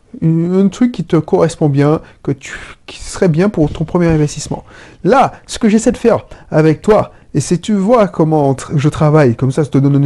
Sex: male